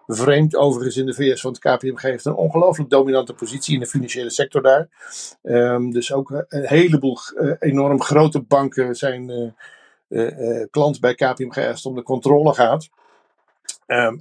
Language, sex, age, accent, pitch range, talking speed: Dutch, male, 50-69, Dutch, 125-145 Hz, 170 wpm